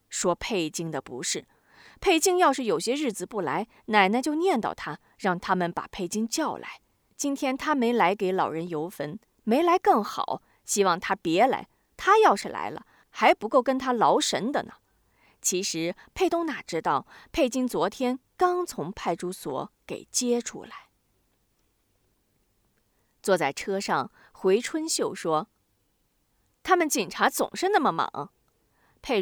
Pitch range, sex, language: 175-290 Hz, female, Chinese